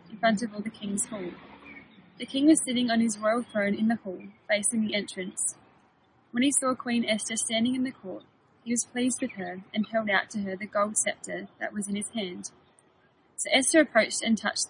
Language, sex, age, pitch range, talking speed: English, female, 20-39, 200-245 Hz, 215 wpm